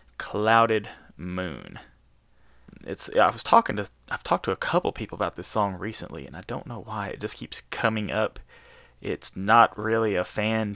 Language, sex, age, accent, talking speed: English, male, 20-39, American, 180 wpm